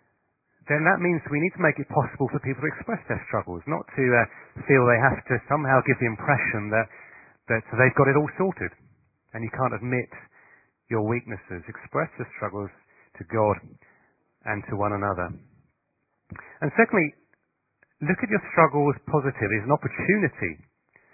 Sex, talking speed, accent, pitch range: male, 165 wpm, British, 115-150 Hz